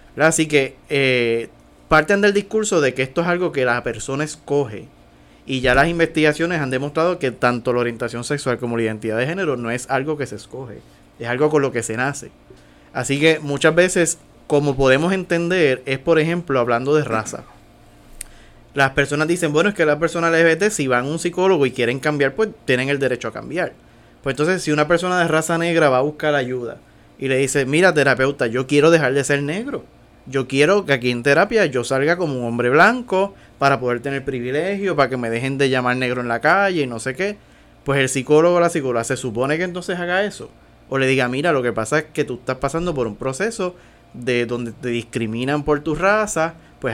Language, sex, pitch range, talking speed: Spanish, male, 125-160 Hz, 215 wpm